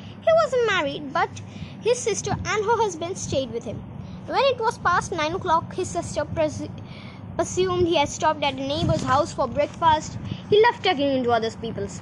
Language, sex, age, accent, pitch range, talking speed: Hindi, female, 20-39, native, 275-370 Hz, 180 wpm